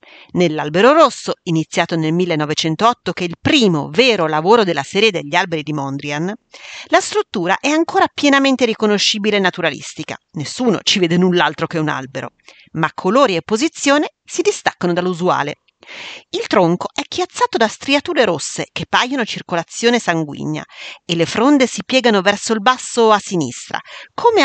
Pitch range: 175-280 Hz